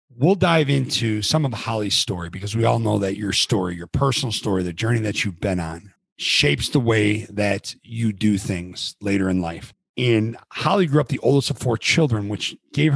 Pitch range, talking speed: 105-145 Hz, 205 wpm